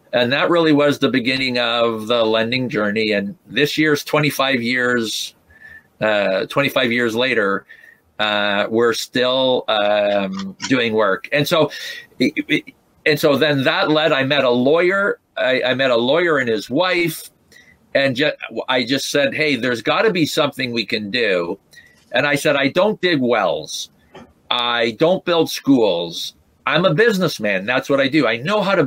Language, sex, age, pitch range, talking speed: English, male, 50-69, 125-160 Hz, 165 wpm